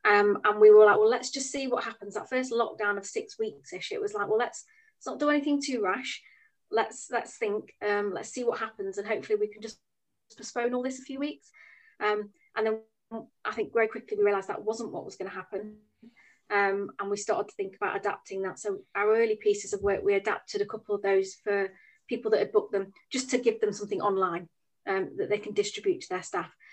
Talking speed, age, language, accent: 235 wpm, 30-49, English, British